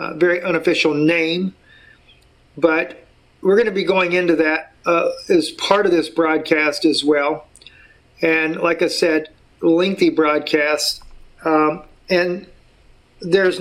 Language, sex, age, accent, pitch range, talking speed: English, male, 50-69, American, 155-180 Hz, 130 wpm